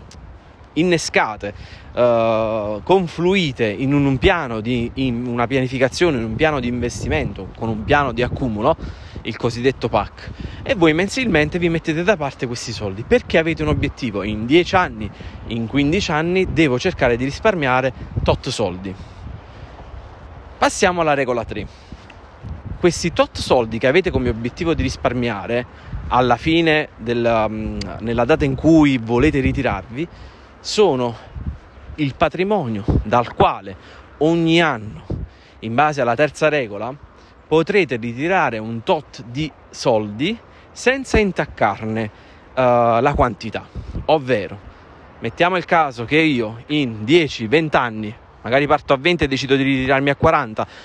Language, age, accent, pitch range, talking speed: Italian, 20-39, native, 105-155 Hz, 130 wpm